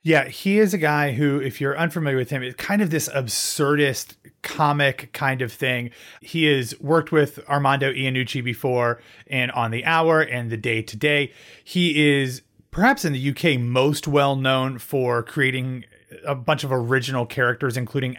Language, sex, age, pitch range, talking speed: English, male, 30-49, 120-150 Hz, 165 wpm